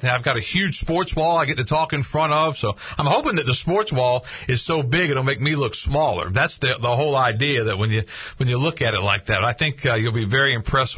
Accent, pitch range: American, 120-155 Hz